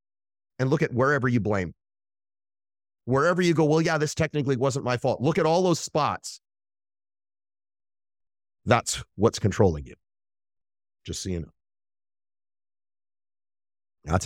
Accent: American